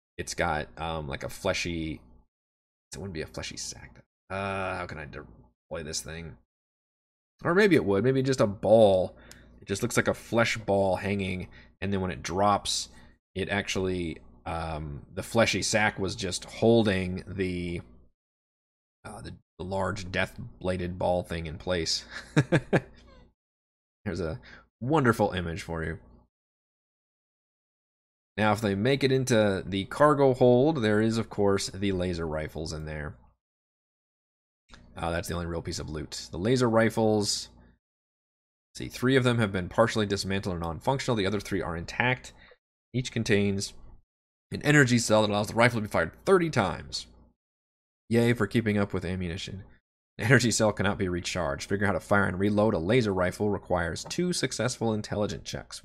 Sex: male